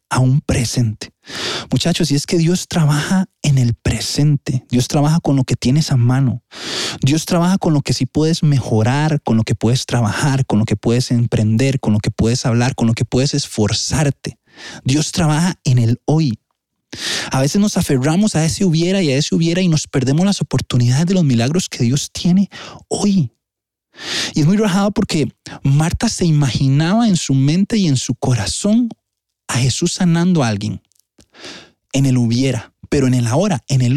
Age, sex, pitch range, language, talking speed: 30-49, male, 125-180 Hz, Spanish, 185 wpm